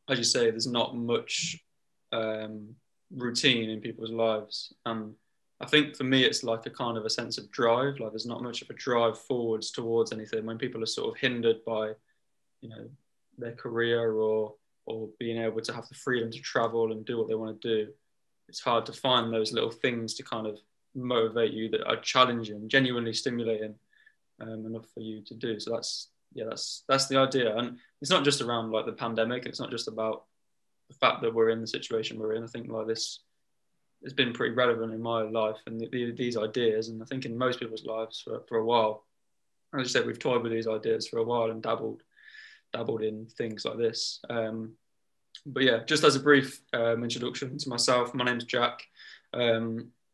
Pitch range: 110-125 Hz